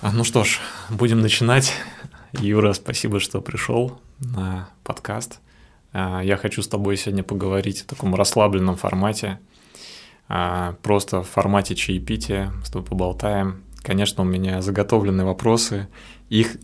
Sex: male